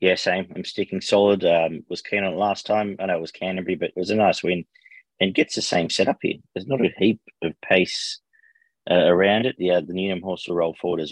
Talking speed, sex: 250 wpm, male